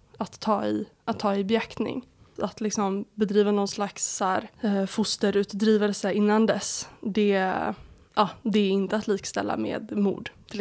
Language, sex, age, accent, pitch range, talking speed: Swedish, female, 20-39, native, 195-215 Hz, 155 wpm